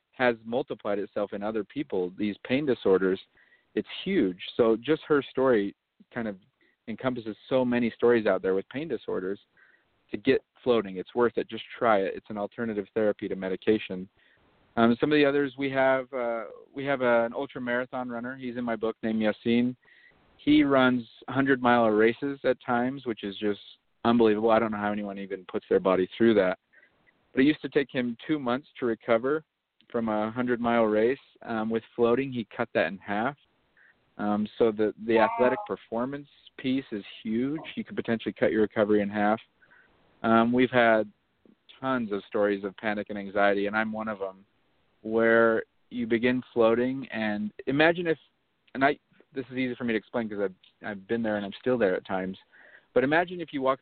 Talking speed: 190 wpm